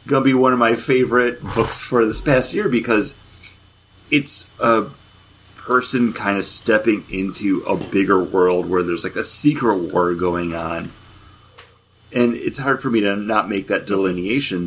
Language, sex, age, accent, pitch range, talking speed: English, male, 30-49, American, 95-115 Hz, 165 wpm